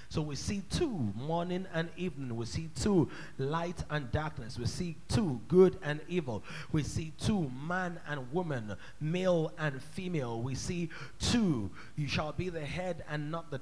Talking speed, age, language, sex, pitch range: 170 wpm, 30-49, English, male, 150-195 Hz